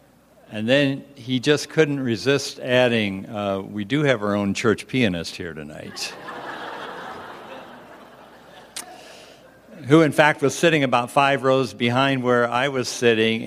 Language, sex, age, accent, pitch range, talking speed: English, male, 60-79, American, 105-130 Hz, 135 wpm